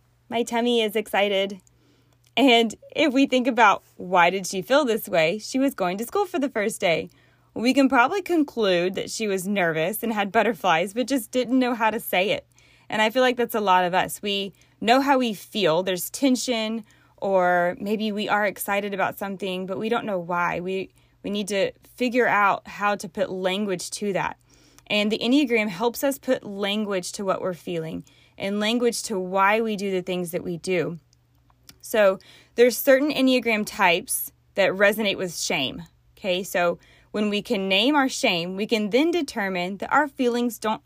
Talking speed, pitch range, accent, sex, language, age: 190 wpm, 185-235 Hz, American, female, English, 20-39